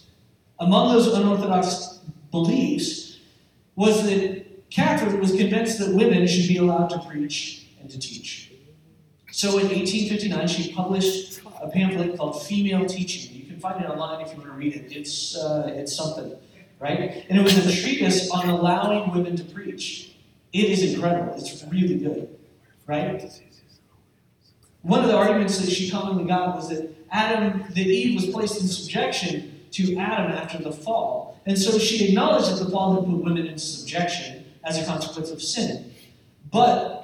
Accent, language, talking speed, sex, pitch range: American, English, 165 wpm, male, 160-205 Hz